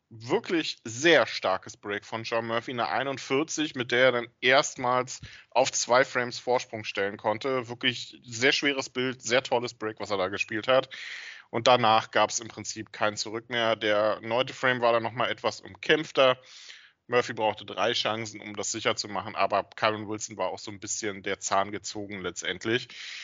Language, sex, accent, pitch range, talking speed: German, male, German, 115-155 Hz, 180 wpm